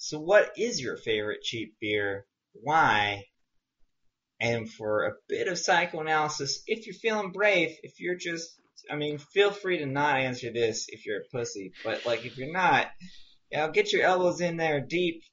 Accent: American